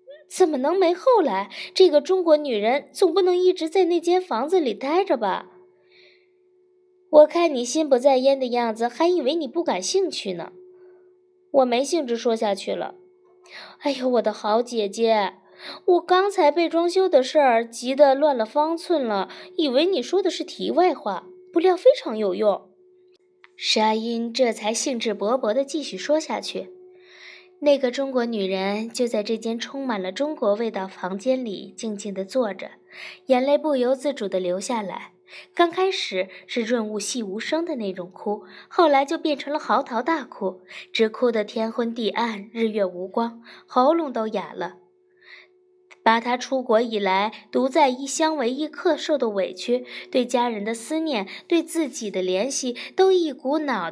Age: 20-39